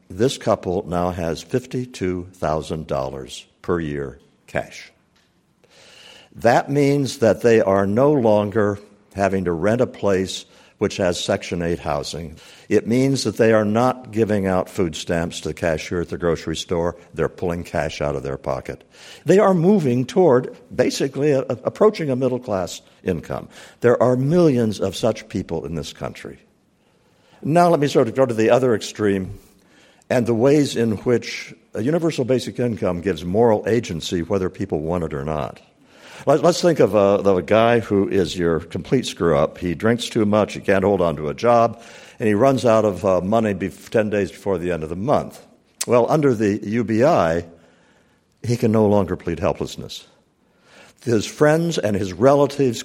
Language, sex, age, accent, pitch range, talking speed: English, male, 60-79, American, 90-125 Hz, 165 wpm